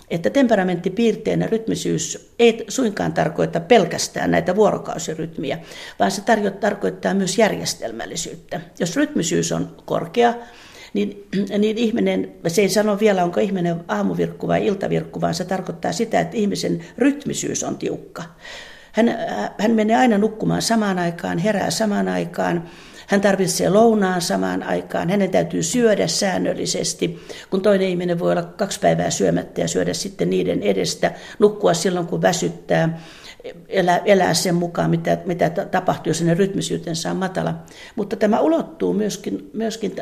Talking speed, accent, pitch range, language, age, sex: 135 wpm, native, 175-225 Hz, Finnish, 40-59, female